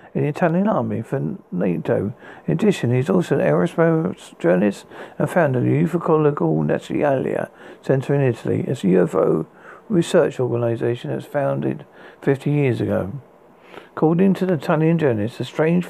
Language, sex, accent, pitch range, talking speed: English, male, British, 120-165 Hz, 150 wpm